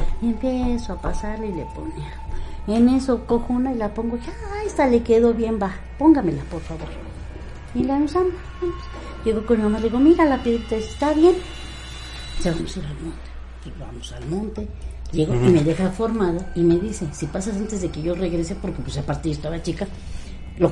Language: Spanish